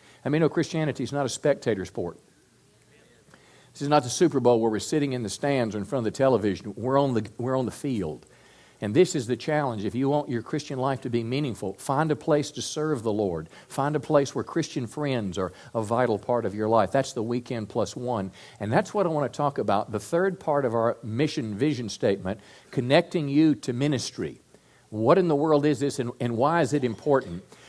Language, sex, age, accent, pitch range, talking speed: English, male, 50-69, American, 120-150 Hz, 225 wpm